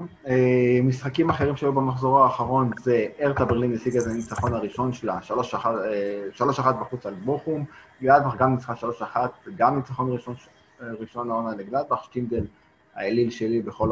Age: 20-39